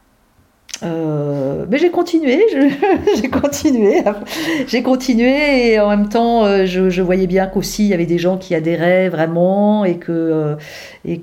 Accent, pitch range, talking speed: French, 160-205 Hz, 155 wpm